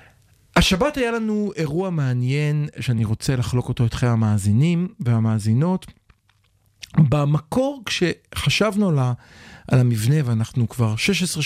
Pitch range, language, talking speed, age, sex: 115-155 Hz, Hebrew, 105 wpm, 40-59, male